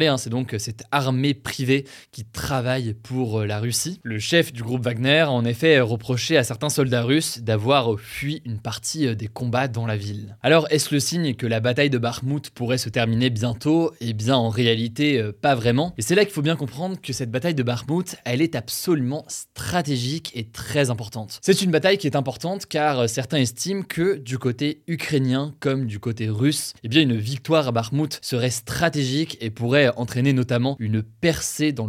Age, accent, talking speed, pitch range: 20-39, French, 190 wpm, 120-155 Hz